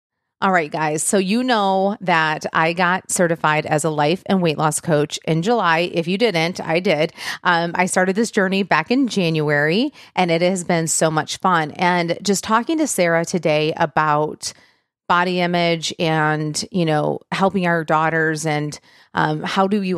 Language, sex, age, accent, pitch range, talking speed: English, female, 30-49, American, 160-195 Hz, 175 wpm